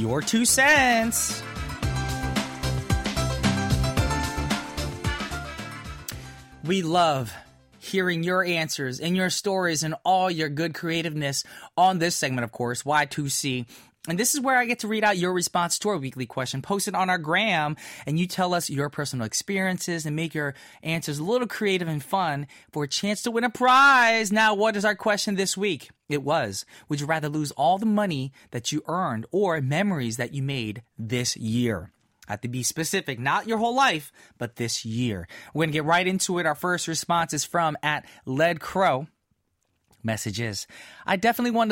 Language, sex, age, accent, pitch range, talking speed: English, male, 20-39, American, 125-185 Hz, 175 wpm